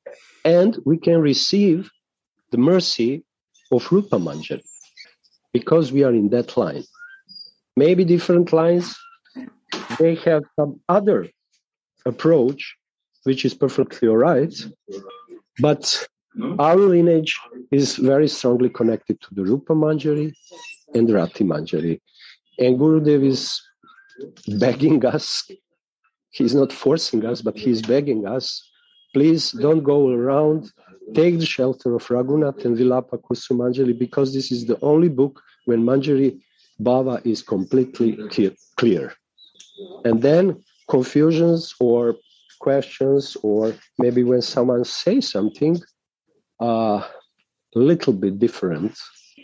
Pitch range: 120-165 Hz